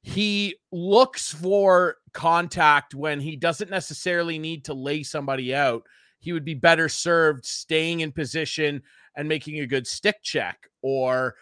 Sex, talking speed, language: male, 145 wpm, English